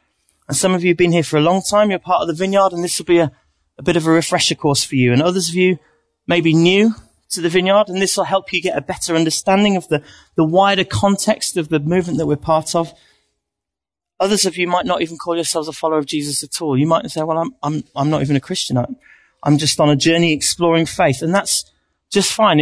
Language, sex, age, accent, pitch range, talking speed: English, male, 30-49, British, 150-190 Hz, 250 wpm